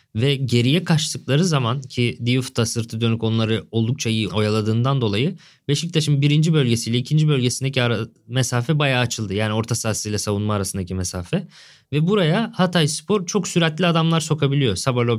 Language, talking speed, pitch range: Turkish, 145 wpm, 120-155 Hz